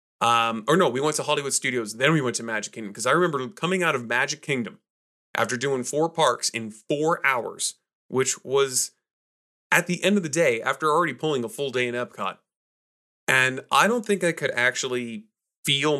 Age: 30-49